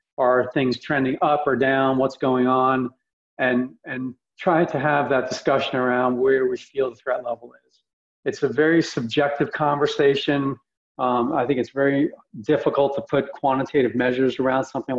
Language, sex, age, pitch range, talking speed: English, male, 40-59, 125-145 Hz, 165 wpm